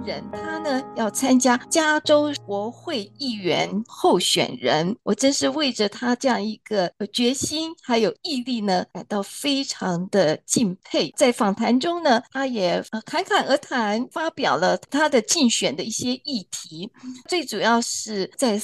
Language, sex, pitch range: Chinese, female, 210-290 Hz